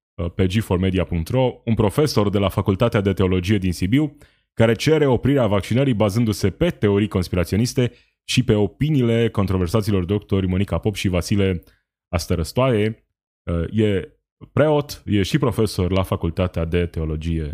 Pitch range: 90-120 Hz